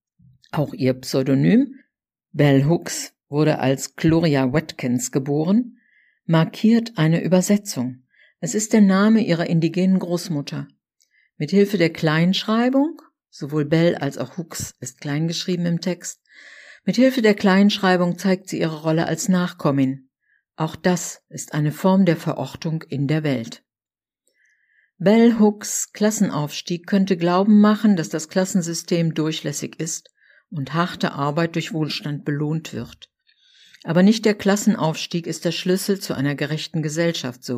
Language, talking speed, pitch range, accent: German, 130 wpm, 155-195 Hz, German